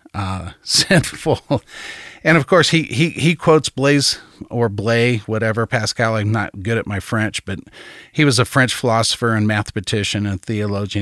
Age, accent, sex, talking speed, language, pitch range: 50-69, American, male, 165 wpm, English, 105-130 Hz